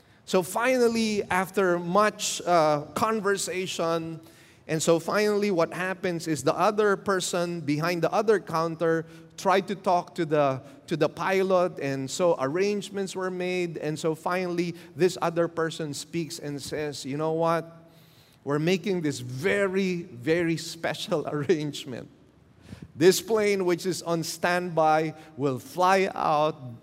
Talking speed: 130 wpm